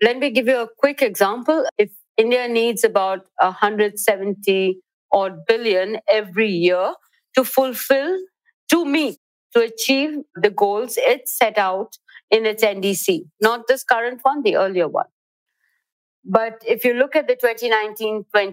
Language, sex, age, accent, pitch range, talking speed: English, female, 50-69, Indian, 205-265 Hz, 145 wpm